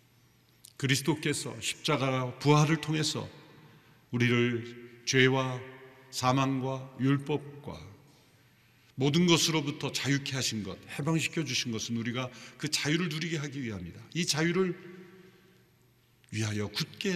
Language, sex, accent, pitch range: Korean, male, native, 115-155 Hz